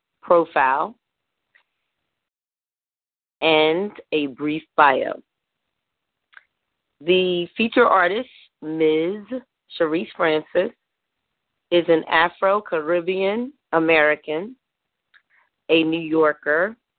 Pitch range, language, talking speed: 155-215 Hz, English, 65 wpm